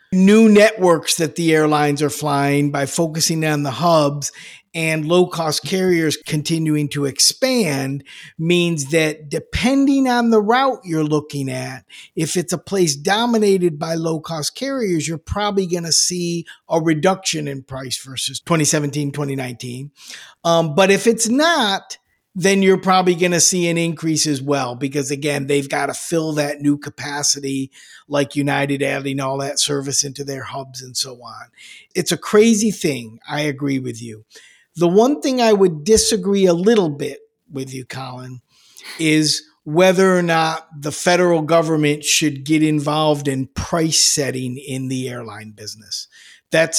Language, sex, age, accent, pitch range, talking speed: English, male, 50-69, American, 140-180 Hz, 155 wpm